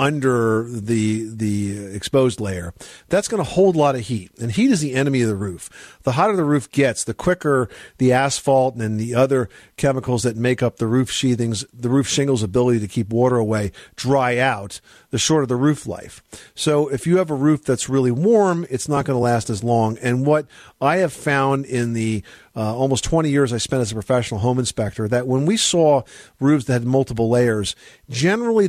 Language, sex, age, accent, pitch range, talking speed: English, male, 50-69, American, 115-140 Hz, 210 wpm